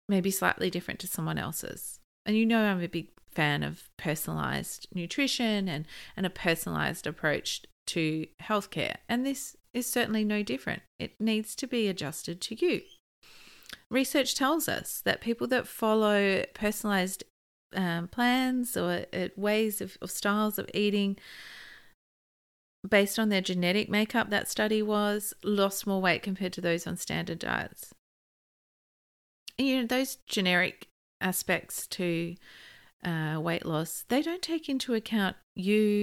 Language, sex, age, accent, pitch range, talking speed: English, female, 30-49, Australian, 175-215 Hz, 140 wpm